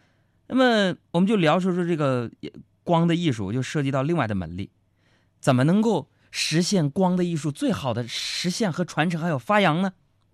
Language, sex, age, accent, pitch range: Chinese, male, 20-39, native, 105-165 Hz